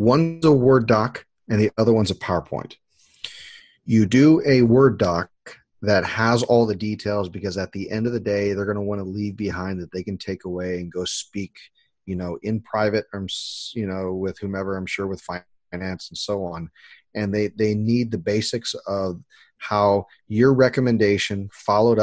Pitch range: 95-110 Hz